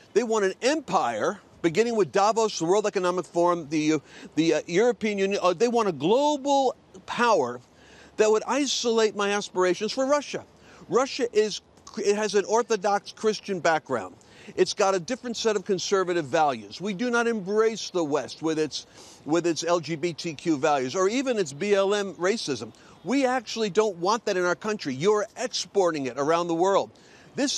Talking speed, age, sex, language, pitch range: 165 wpm, 50-69, male, English, 160-220 Hz